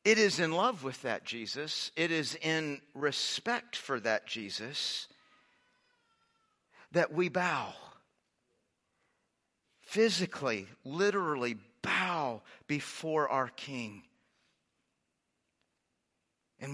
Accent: American